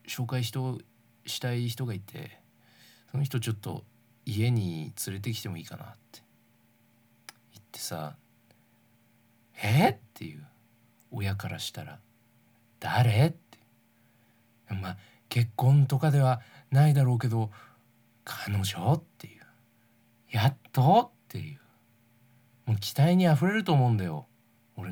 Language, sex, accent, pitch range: Japanese, male, native, 115-140 Hz